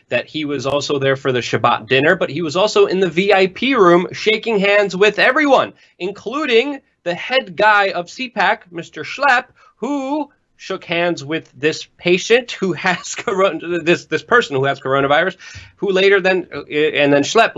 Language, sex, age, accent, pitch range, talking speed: English, male, 30-49, American, 140-195 Hz, 170 wpm